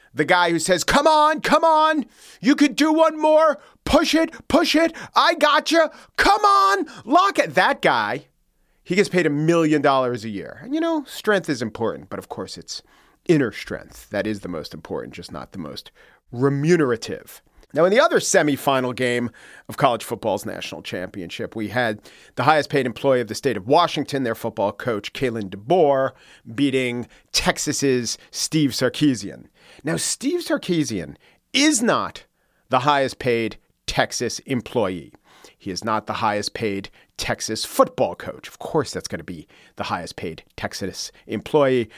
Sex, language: male, English